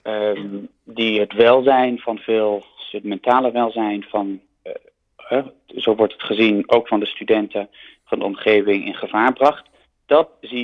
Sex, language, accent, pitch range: male, Dutch, Dutch, 110-150 Hz